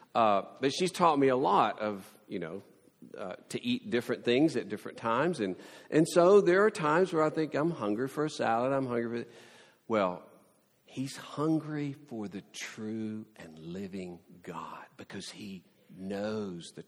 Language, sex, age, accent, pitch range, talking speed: English, male, 50-69, American, 110-155 Hz, 175 wpm